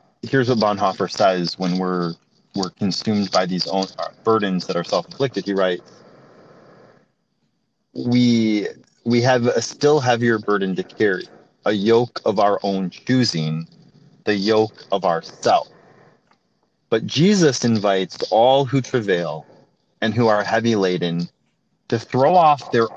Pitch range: 100-135 Hz